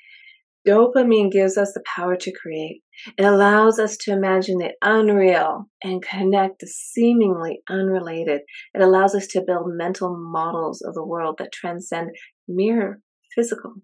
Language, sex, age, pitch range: English, female, 30-49, 170-215 Hz